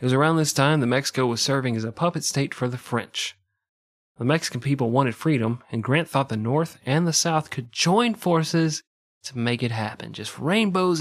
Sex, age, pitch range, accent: male, 30-49, 120-155 Hz, American